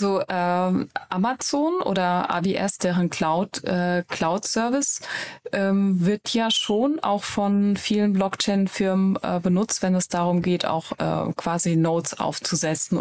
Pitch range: 165-195 Hz